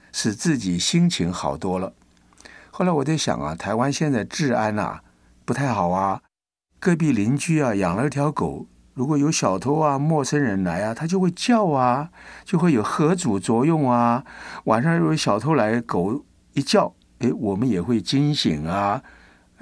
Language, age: Chinese, 60-79